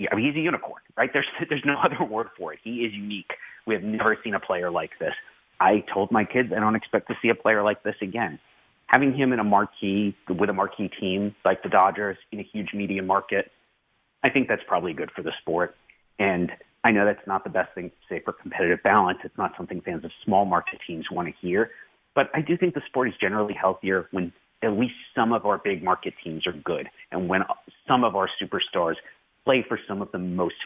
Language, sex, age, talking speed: English, male, 30-49, 230 wpm